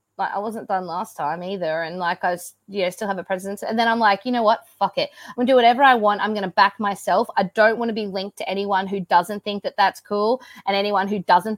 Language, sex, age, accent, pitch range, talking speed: English, female, 20-39, Australian, 190-225 Hz, 290 wpm